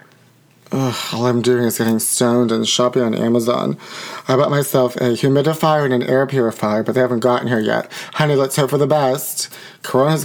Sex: male